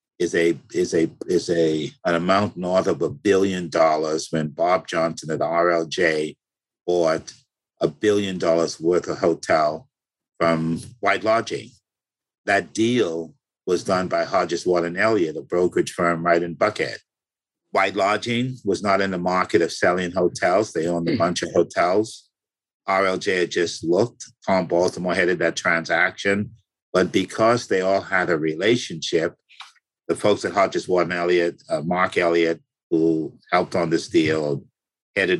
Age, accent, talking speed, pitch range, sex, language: 50-69, American, 155 wpm, 85-105 Hz, male, English